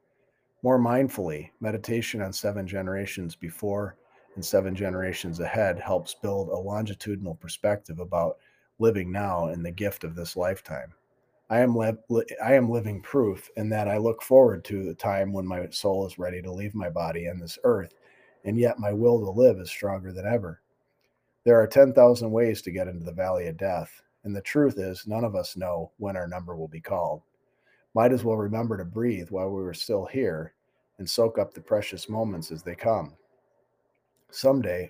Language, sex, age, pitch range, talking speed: English, male, 40-59, 90-110 Hz, 180 wpm